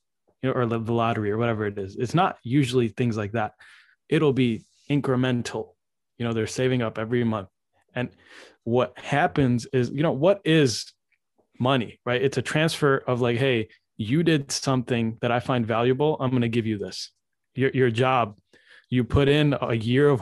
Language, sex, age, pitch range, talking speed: English, male, 20-39, 120-140 Hz, 185 wpm